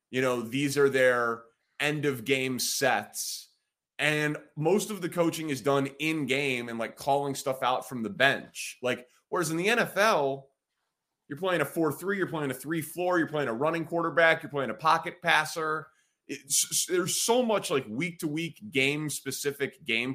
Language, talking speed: English, 160 wpm